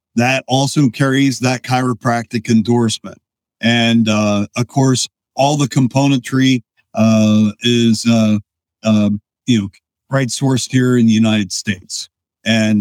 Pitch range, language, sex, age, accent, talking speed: 105-130 Hz, English, male, 50-69, American, 130 wpm